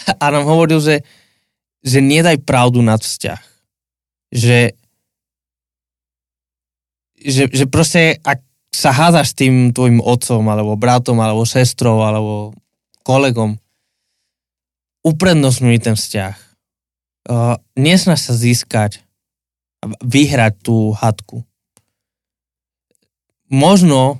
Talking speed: 90 wpm